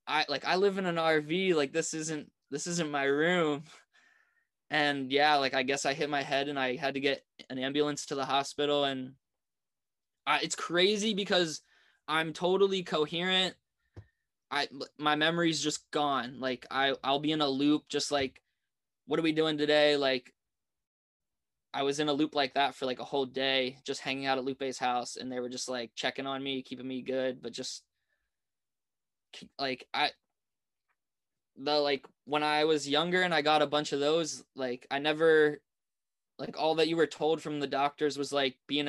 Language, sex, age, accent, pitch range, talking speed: English, male, 10-29, American, 135-155 Hz, 185 wpm